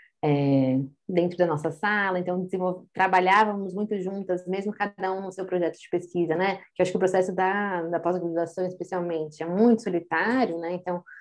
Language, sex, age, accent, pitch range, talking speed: Portuguese, female, 20-39, Brazilian, 170-205 Hz, 180 wpm